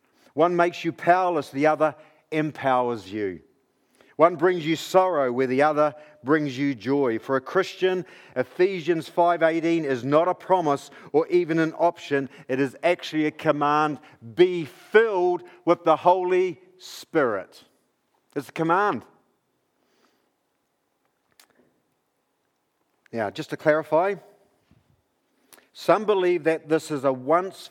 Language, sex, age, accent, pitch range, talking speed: English, male, 50-69, Australian, 140-180 Hz, 120 wpm